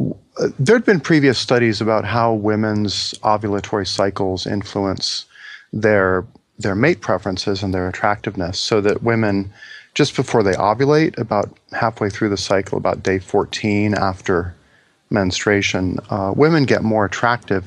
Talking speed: 130 wpm